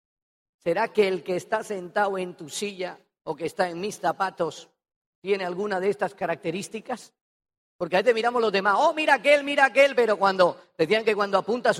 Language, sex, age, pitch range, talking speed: Spanish, female, 40-59, 175-235 Hz, 190 wpm